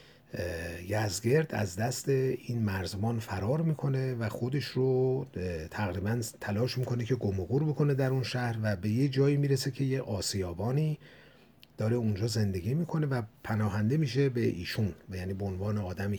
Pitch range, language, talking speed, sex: 95-130 Hz, Persian, 150 wpm, male